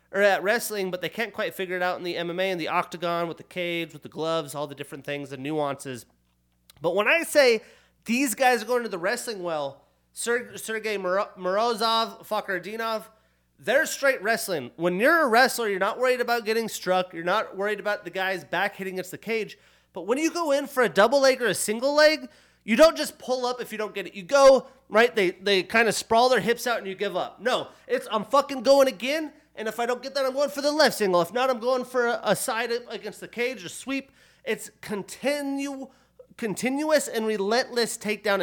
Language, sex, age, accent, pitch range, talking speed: English, male, 30-49, American, 195-260 Hz, 220 wpm